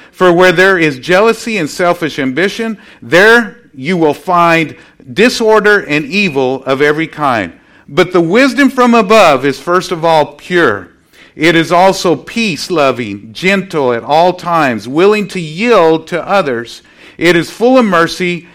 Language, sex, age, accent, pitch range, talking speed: English, male, 50-69, American, 140-190 Hz, 150 wpm